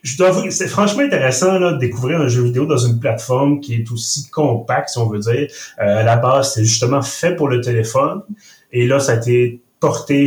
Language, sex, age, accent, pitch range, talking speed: French, male, 30-49, Canadian, 110-140 Hz, 230 wpm